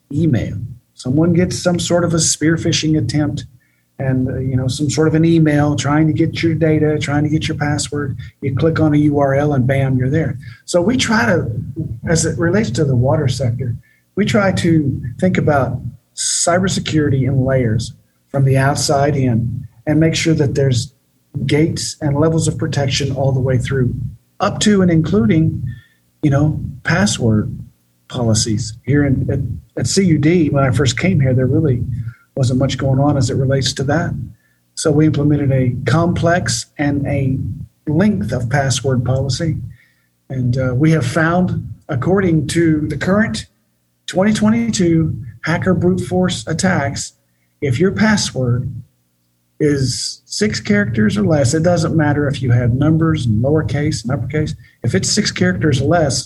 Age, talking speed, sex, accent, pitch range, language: 50-69, 165 wpm, male, American, 125-160 Hz, English